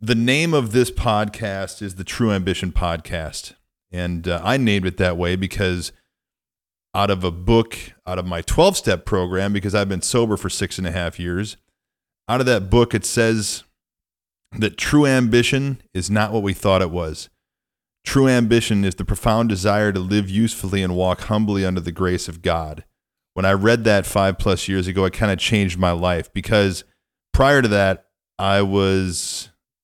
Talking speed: 180 wpm